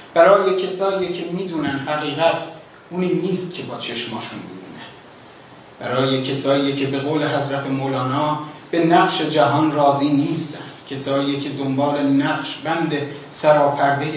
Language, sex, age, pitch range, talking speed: Persian, male, 30-49, 140-175 Hz, 130 wpm